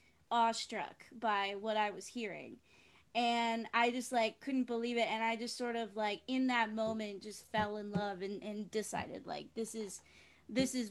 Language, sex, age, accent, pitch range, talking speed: English, female, 20-39, American, 215-250 Hz, 185 wpm